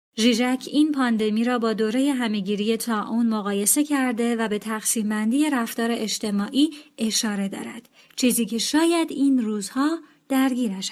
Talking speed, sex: 125 wpm, female